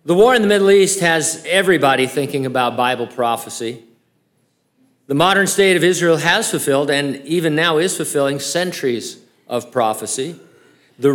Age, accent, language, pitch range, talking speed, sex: 50-69, American, English, 115-155 Hz, 150 wpm, male